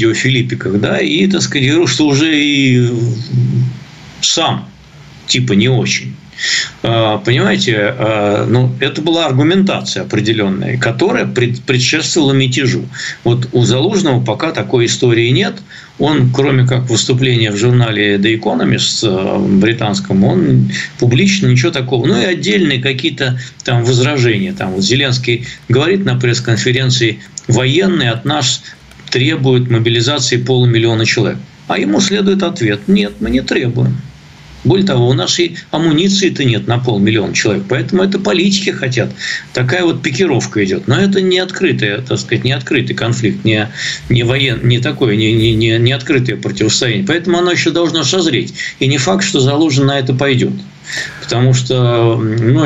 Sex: male